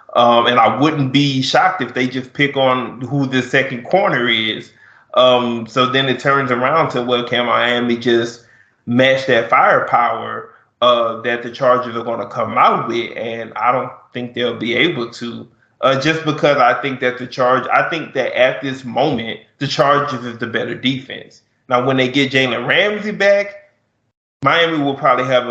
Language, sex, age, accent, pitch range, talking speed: English, male, 30-49, American, 120-130 Hz, 185 wpm